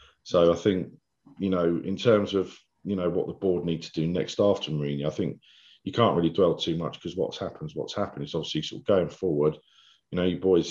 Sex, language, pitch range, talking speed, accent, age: male, English, 75-85 Hz, 245 wpm, British, 40-59